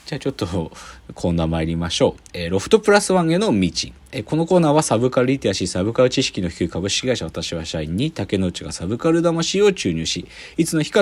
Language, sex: Japanese, male